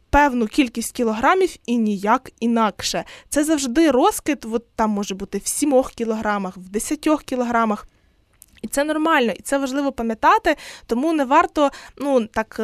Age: 20-39